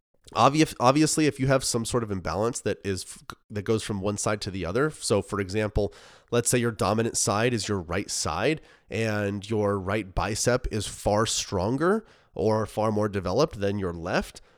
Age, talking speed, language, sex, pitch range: 30-49, 180 wpm, English, male, 100-120 Hz